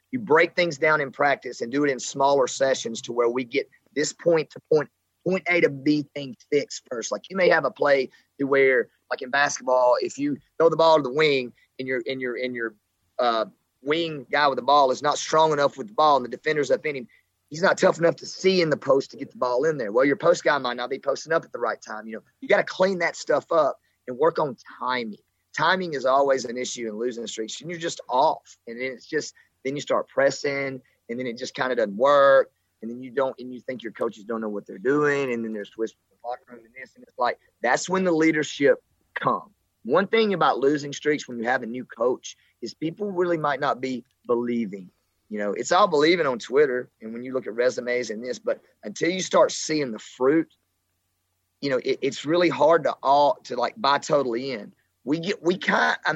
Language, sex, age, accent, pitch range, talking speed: English, male, 30-49, American, 120-170 Hz, 245 wpm